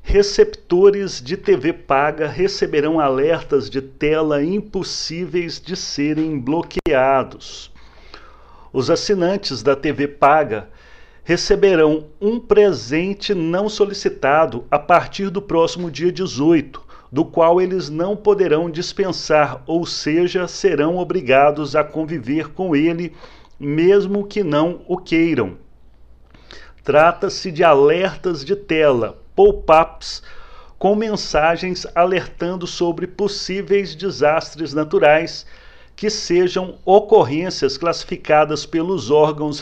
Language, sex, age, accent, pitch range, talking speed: Portuguese, male, 40-59, Brazilian, 150-190 Hz, 100 wpm